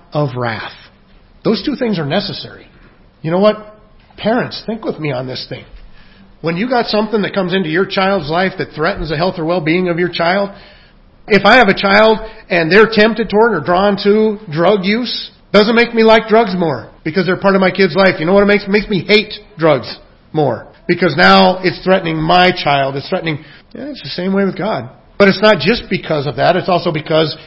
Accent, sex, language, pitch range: American, male, English, 145-200 Hz